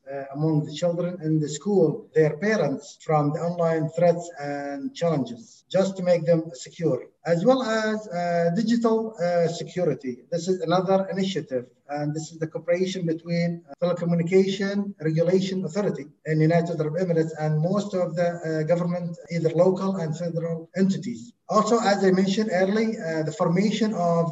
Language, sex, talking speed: English, male, 160 wpm